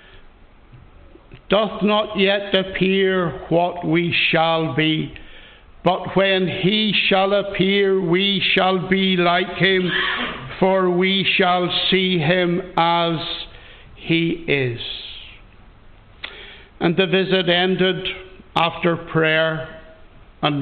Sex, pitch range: male, 165-190 Hz